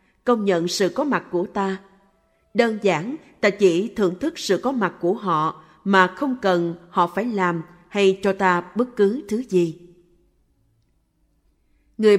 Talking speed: 160 wpm